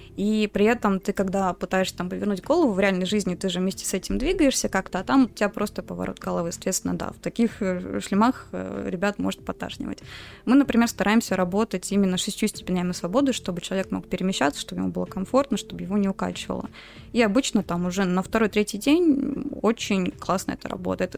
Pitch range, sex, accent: 185-220 Hz, female, native